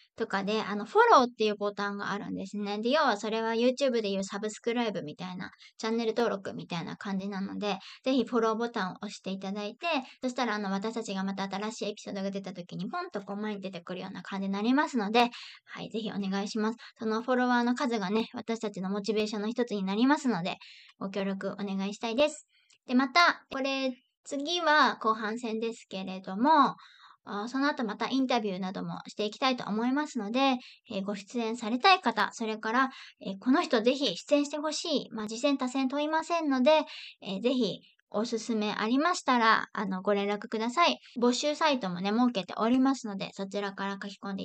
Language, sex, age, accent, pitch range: Japanese, male, 20-39, native, 205-255 Hz